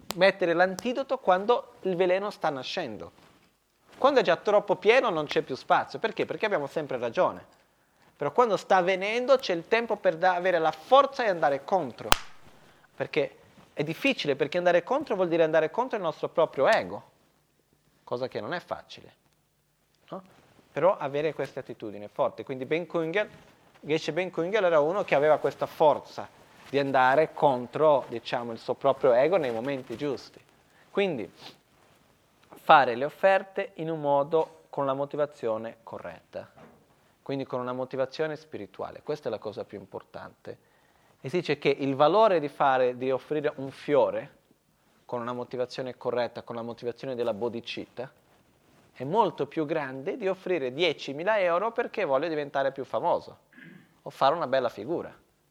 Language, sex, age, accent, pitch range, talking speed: Italian, male, 30-49, native, 135-185 Hz, 155 wpm